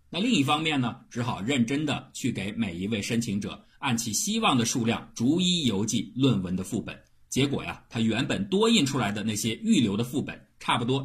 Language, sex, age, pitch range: Chinese, male, 50-69, 95-165 Hz